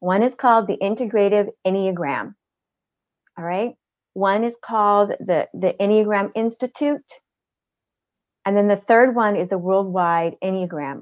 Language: English